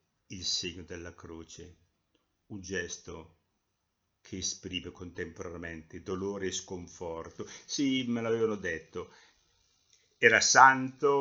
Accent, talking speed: native, 95 wpm